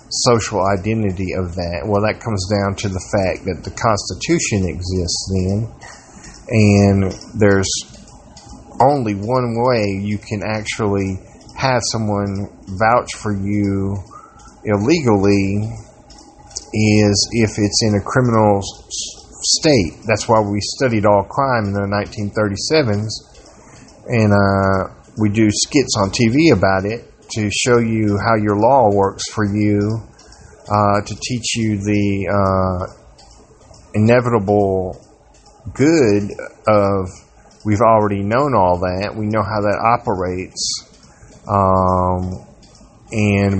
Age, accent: 40-59, American